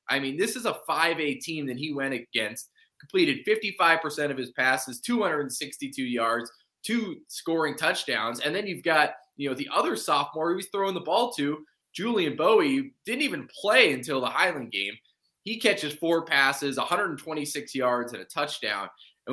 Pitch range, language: 125-180 Hz, English